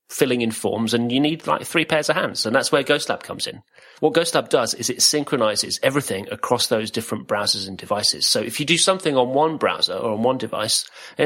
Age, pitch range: 30-49, 115-155 Hz